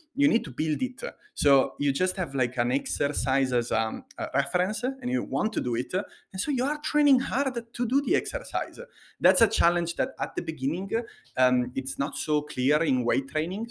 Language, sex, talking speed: English, male, 200 wpm